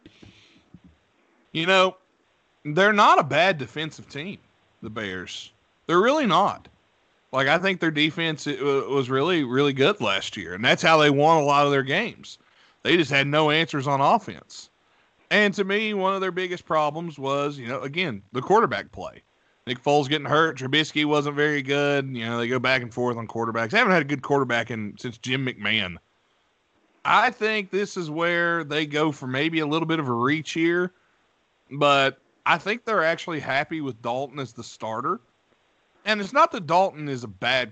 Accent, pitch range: American, 125-170 Hz